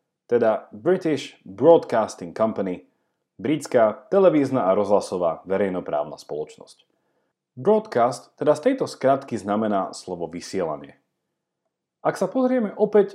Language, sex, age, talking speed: Slovak, male, 40-59, 100 wpm